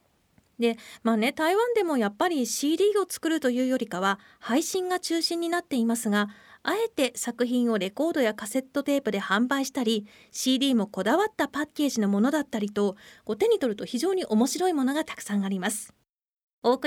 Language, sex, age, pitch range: Japanese, female, 40-59, 215-330 Hz